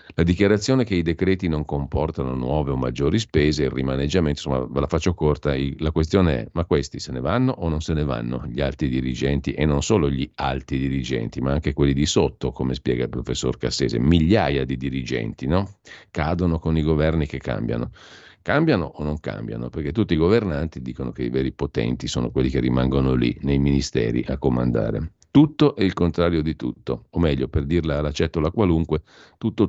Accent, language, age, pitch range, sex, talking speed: native, Italian, 50-69, 70-85 Hz, male, 190 wpm